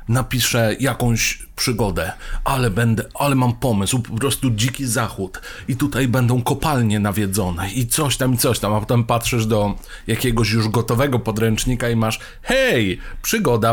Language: Polish